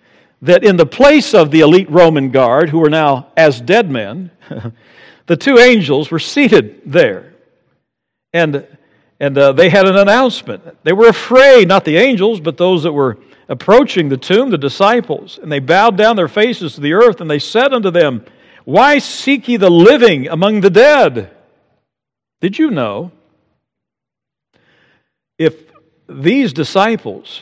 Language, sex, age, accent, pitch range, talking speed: English, male, 60-79, American, 140-210 Hz, 155 wpm